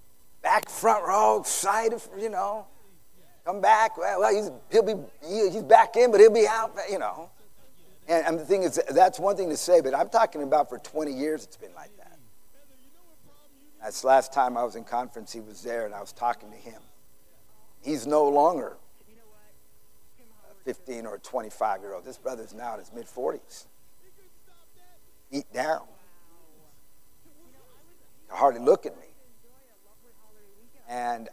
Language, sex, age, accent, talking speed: English, male, 50-69, American, 165 wpm